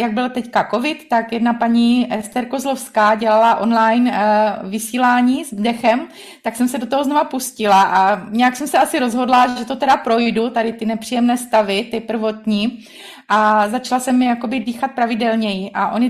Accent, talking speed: native, 175 wpm